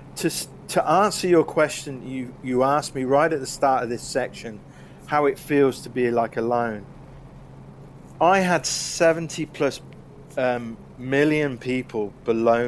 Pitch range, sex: 115-145 Hz, male